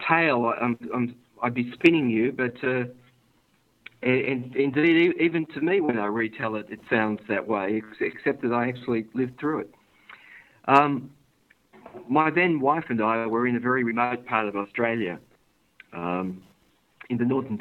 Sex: male